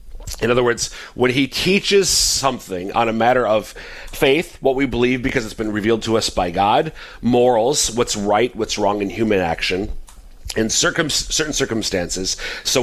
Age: 40-59